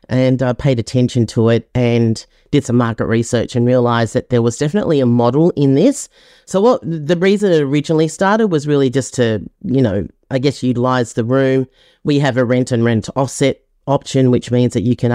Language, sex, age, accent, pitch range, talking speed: English, female, 30-49, Australian, 120-140 Hz, 205 wpm